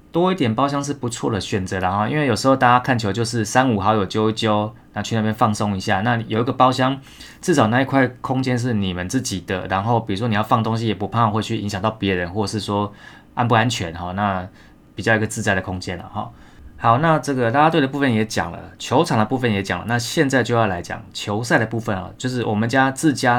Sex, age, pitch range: male, 20-39, 100-125 Hz